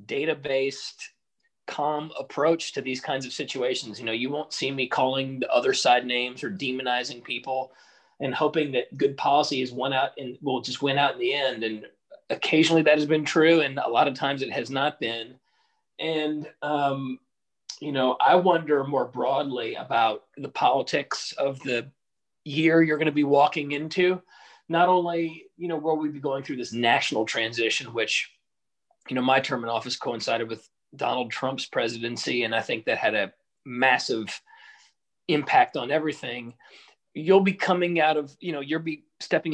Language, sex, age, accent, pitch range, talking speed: English, male, 40-59, American, 130-160 Hz, 180 wpm